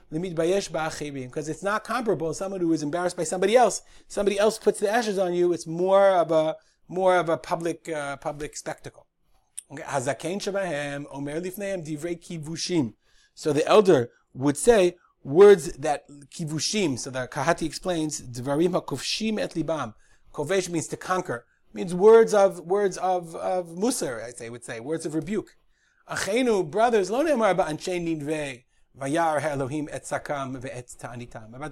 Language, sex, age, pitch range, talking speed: English, male, 30-49, 150-185 Hz, 135 wpm